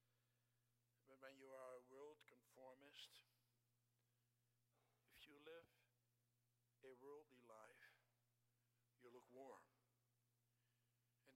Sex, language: male, English